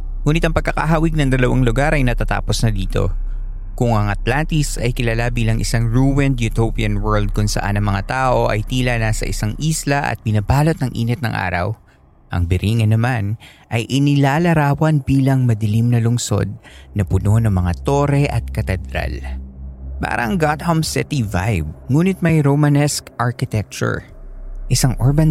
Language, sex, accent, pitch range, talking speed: Filipino, male, native, 100-140 Hz, 145 wpm